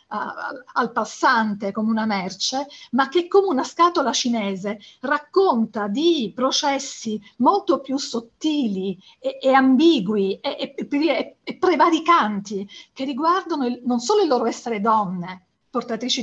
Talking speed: 120 wpm